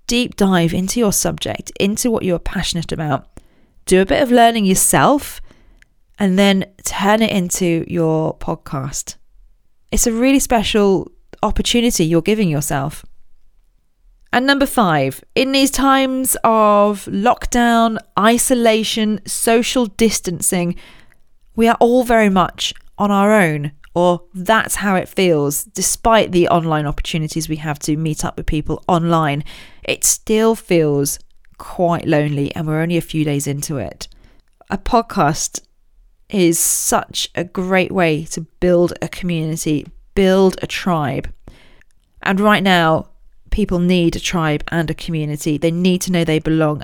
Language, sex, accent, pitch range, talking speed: English, female, British, 160-210 Hz, 140 wpm